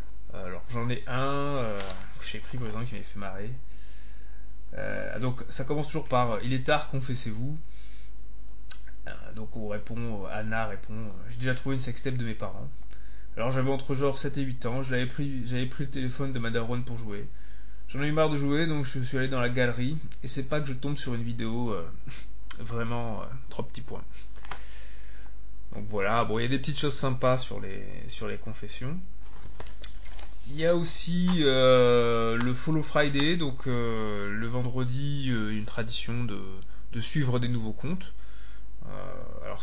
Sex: male